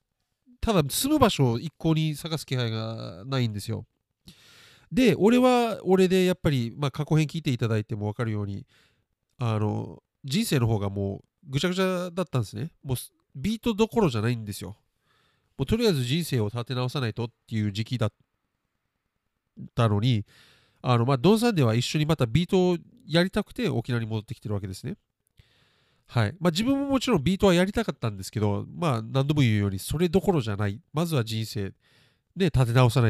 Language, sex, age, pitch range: Japanese, male, 40-59, 110-180 Hz